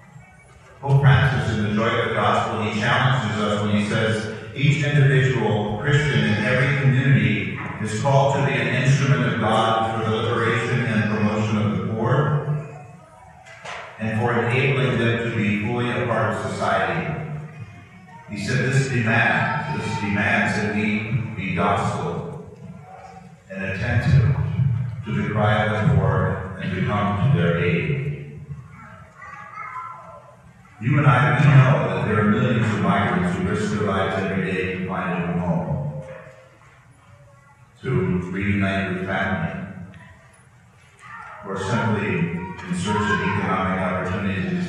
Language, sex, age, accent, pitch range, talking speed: English, male, 40-59, American, 105-140 Hz, 140 wpm